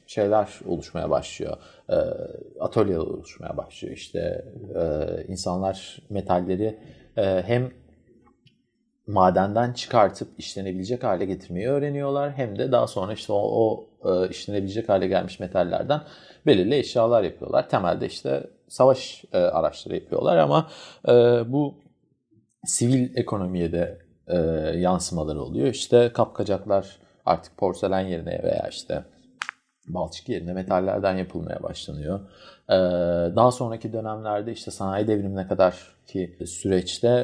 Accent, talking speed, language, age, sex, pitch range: native, 100 wpm, Turkish, 40-59, male, 95-120 Hz